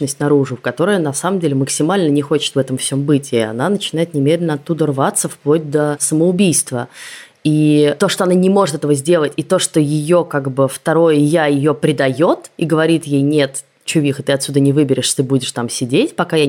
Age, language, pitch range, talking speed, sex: 20-39, Russian, 135-165 Hz, 205 wpm, female